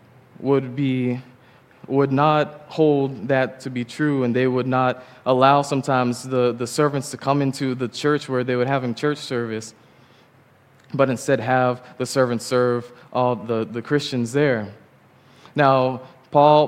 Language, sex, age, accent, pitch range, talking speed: English, male, 20-39, American, 125-140 Hz, 155 wpm